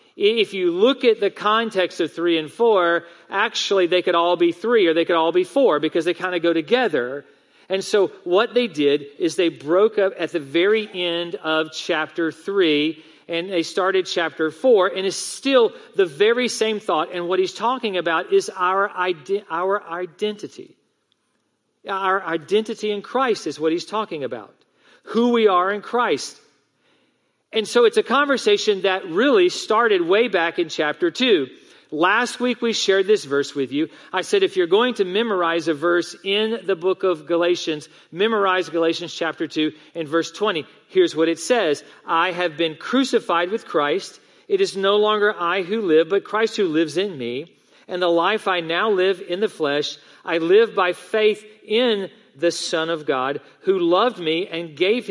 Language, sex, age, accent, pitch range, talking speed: English, male, 40-59, American, 170-225 Hz, 180 wpm